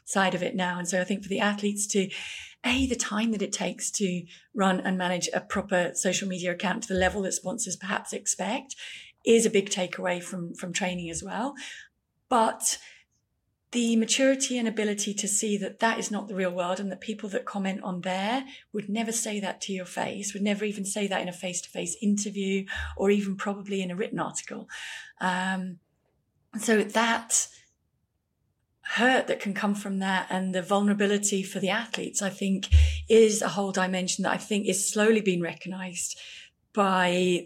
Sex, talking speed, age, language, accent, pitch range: female, 185 wpm, 30-49, English, British, 185-210 Hz